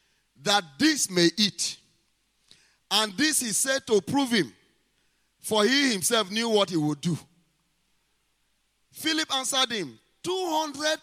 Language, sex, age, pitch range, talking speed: English, male, 30-49, 185-260 Hz, 130 wpm